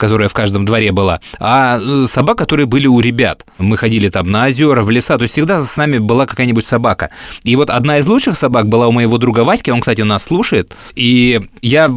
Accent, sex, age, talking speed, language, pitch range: native, male, 20-39, 215 wpm, Russian, 110-135 Hz